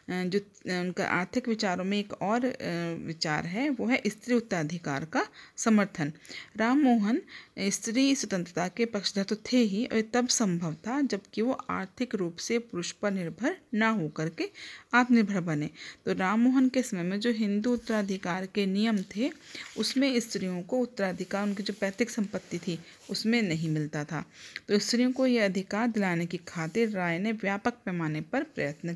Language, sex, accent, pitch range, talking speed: Hindi, female, native, 180-230 Hz, 160 wpm